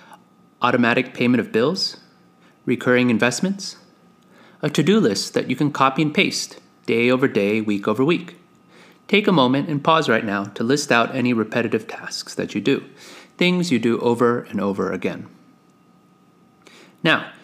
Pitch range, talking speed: 120-165 Hz, 155 wpm